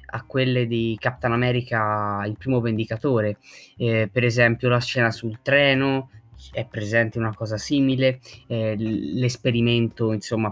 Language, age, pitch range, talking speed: Italian, 20-39, 115-135 Hz, 130 wpm